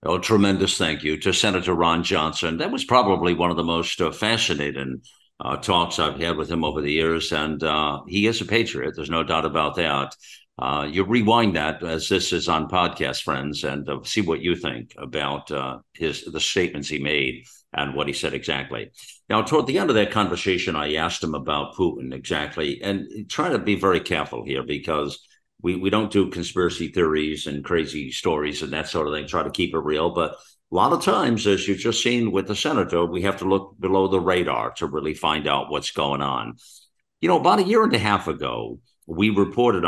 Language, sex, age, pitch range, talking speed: English, male, 60-79, 75-95 Hz, 215 wpm